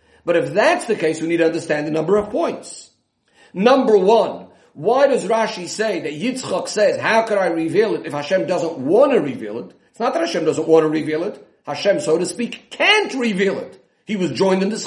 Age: 50-69